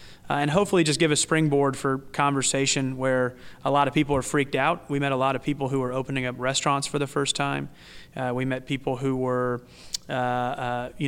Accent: American